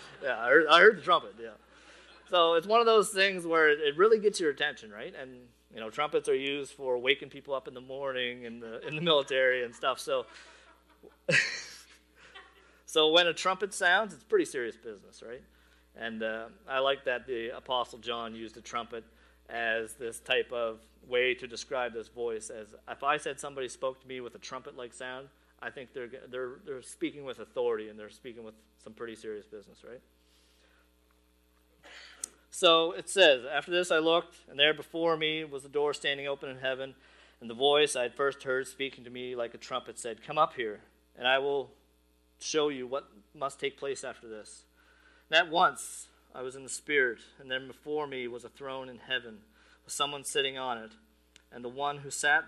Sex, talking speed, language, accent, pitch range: male, 200 wpm, English, American, 115-165 Hz